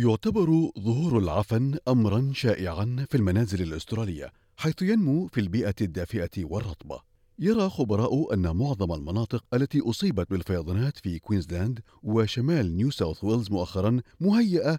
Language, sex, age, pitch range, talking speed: Arabic, male, 40-59, 95-135 Hz, 120 wpm